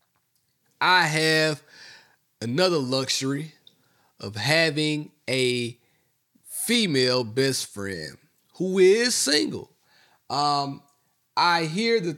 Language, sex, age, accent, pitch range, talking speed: English, male, 30-49, American, 130-180 Hz, 85 wpm